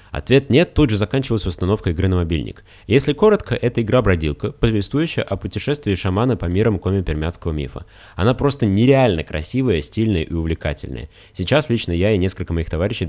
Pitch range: 80-105 Hz